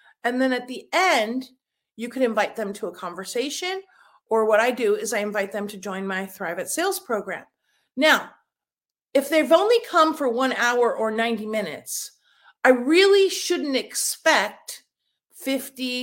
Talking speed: 160 wpm